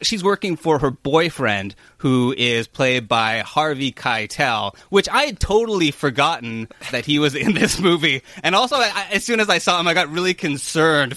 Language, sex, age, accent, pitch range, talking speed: English, male, 30-49, American, 115-165 Hz, 195 wpm